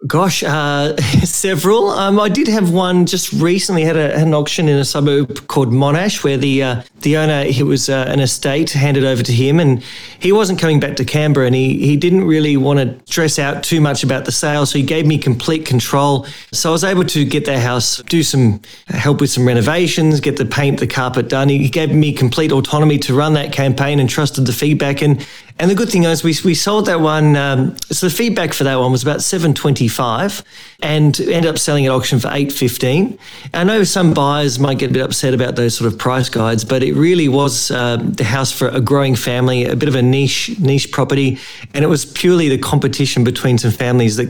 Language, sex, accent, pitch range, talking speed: English, male, Australian, 130-155 Hz, 225 wpm